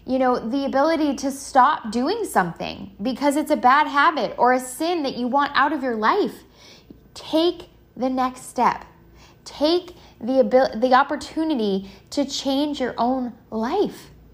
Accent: American